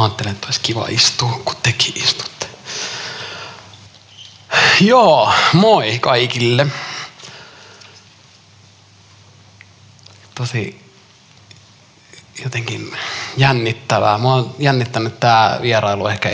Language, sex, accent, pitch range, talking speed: Finnish, male, native, 100-120 Hz, 75 wpm